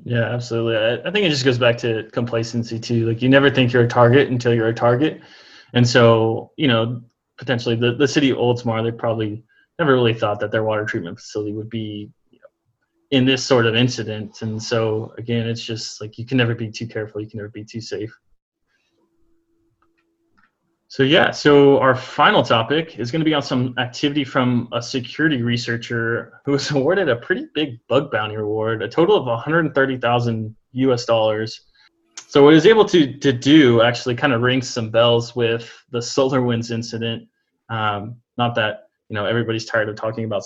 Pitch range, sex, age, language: 115-135 Hz, male, 20-39, English